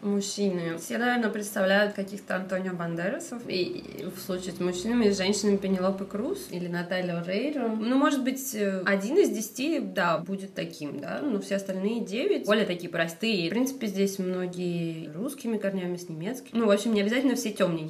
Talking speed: 175 wpm